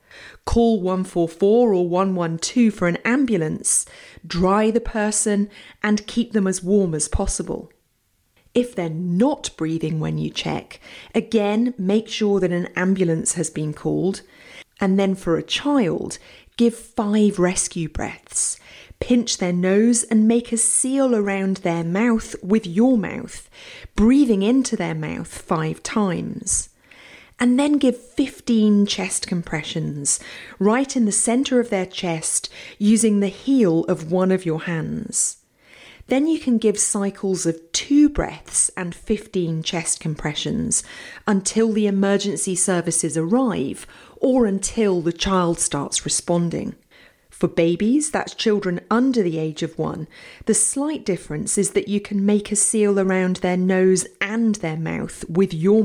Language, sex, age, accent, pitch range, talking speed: English, female, 30-49, British, 175-225 Hz, 140 wpm